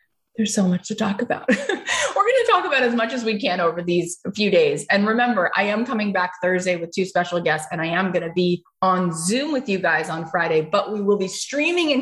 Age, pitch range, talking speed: 20-39, 165-225 Hz, 250 wpm